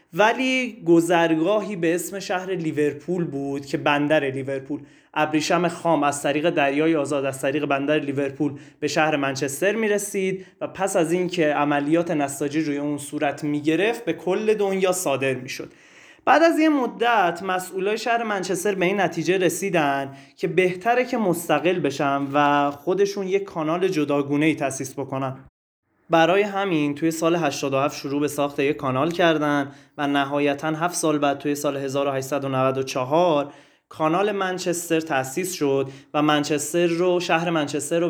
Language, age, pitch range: Persian, 20-39, 140-180 Hz